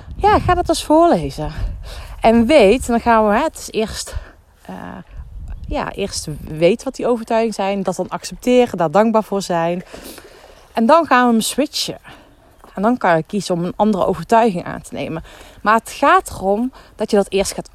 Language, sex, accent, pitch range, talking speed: Dutch, female, Dutch, 180-230 Hz, 185 wpm